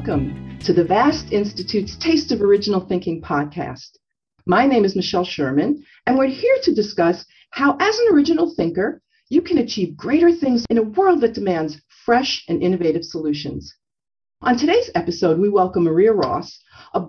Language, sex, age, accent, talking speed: English, female, 50-69, American, 165 wpm